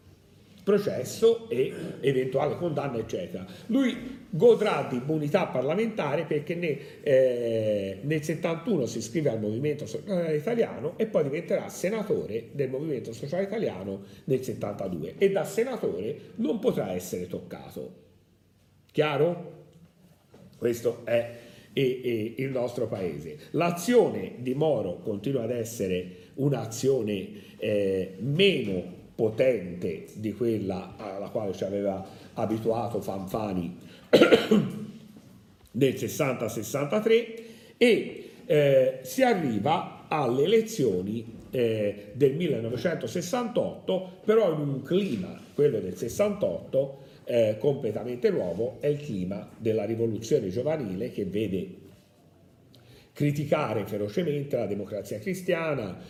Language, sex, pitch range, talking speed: Italian, male, 105-175 Hz, 100 wpm